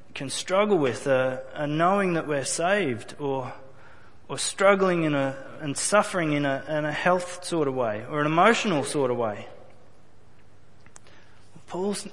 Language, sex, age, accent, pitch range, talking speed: English, male, 30-49, Australian, 135-210 Hz, 155 wpm